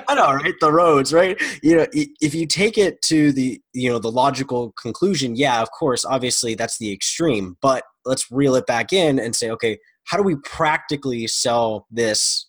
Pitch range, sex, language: 110-130 Hz, male, English